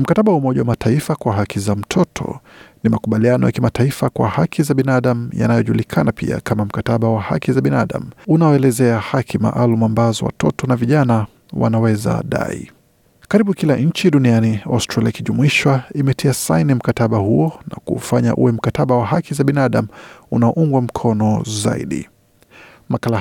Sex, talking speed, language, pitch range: male, 140 wpm, Swahili, 115-140 Hz